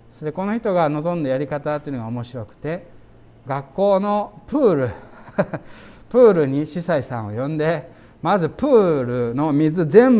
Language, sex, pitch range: Japanese, male, 115-155 Hz